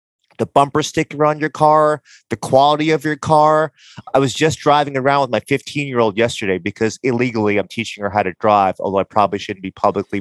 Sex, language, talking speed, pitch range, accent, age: male, English, 210 wpm, 115-145 Hz, American, 30-49